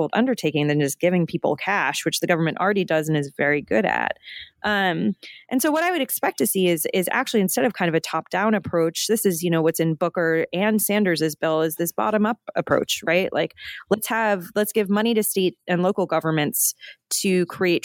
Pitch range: 165-210 Hz